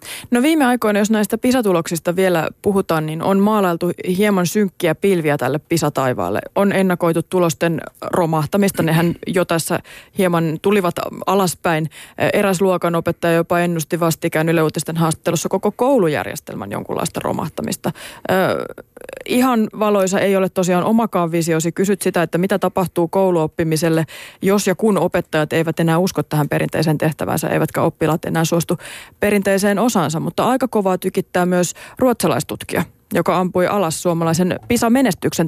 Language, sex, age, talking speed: Finnish, female, 30-49, 135 wpm